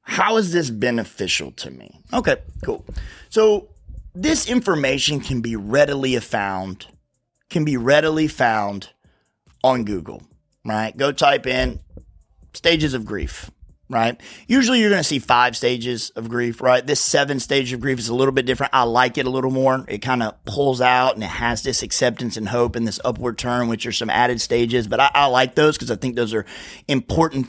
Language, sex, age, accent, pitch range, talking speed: English, male, 30-49, American, 110-145 Hz, 190 wpm